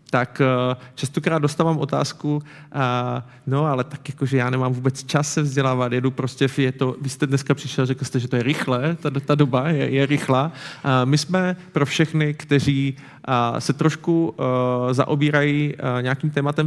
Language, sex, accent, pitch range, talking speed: Czech, male, native, 125-145 Hz, 165 wpm